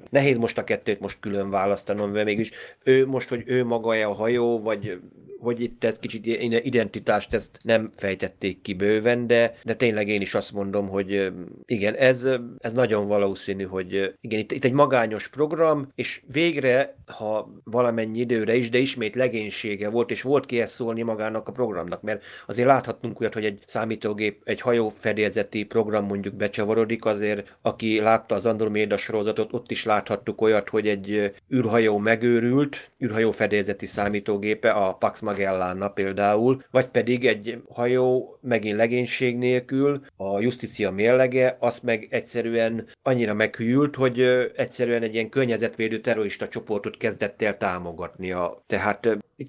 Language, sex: Hungarian, male